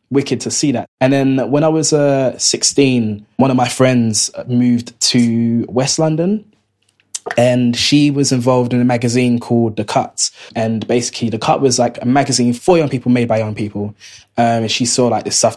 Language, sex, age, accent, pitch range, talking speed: English, male, 20-39, British, 110-125 Hz, 195 wpm